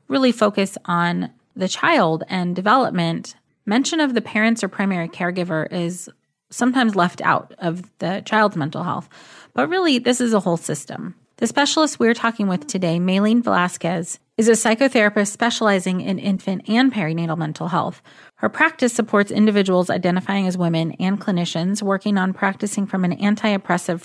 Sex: female